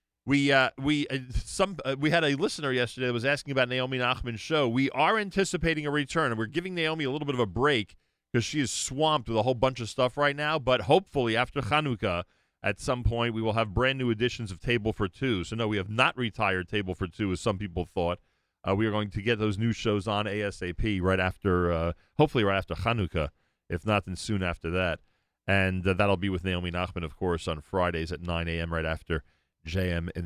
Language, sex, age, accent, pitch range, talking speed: English, male, 40-59, American, 85-120 Hz, 230 wpm